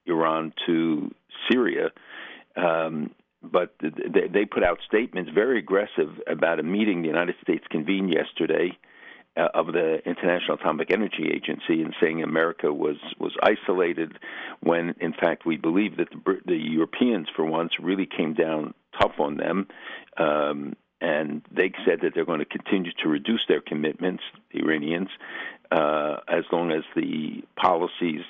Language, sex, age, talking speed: English, male, 60-79, 155 wpm